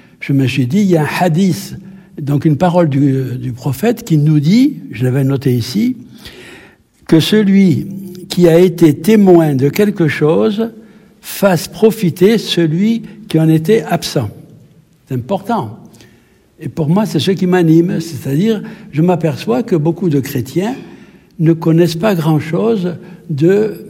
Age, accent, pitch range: 60-79, French, 145-195 Hz